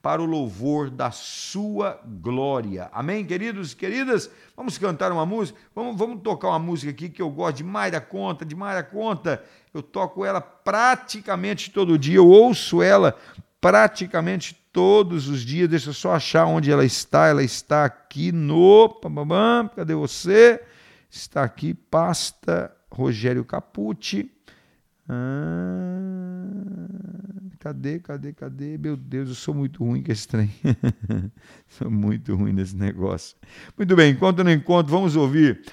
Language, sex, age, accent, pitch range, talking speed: Portuguese, male, 50-69, Brazilian, 125-180 Hz, 145 wpm